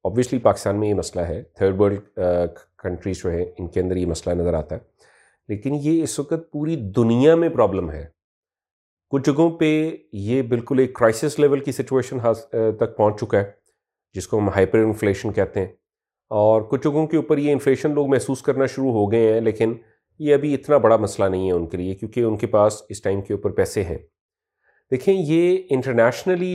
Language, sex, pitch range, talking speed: Urdu, male, 100-145 Hz, 190 wpm